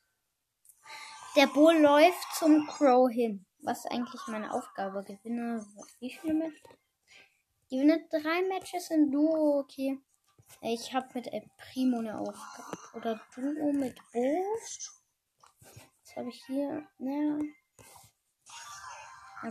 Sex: female